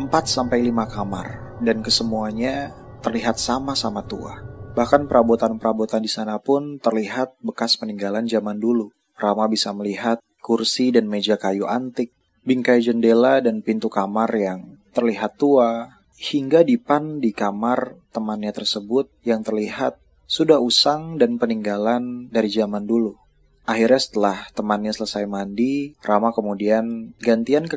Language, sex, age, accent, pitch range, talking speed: Indonesian, male, 20-39, native, 110-125 Hz, 130 wpm